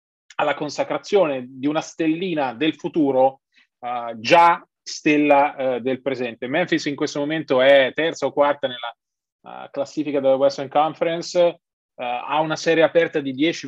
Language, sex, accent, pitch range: Italian, male, native, 135-170 Hz